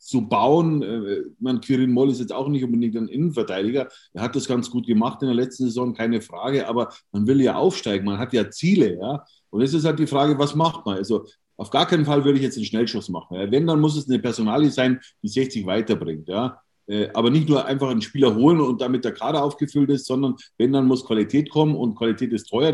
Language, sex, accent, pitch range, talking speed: German, male, German, 120-150 Hz, 230 wpm